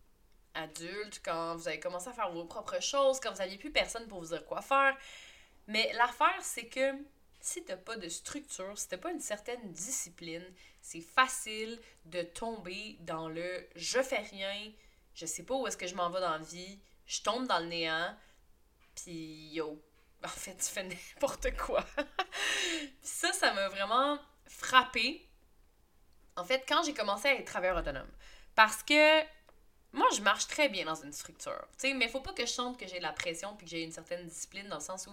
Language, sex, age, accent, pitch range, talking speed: French, female, 20-39, Canadian, 170-265 Hz, 200 wpm